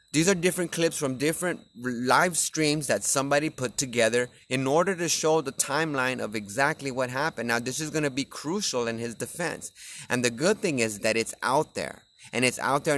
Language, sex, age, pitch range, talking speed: English, male, 30-49, 115-155 Hz, 210 wpm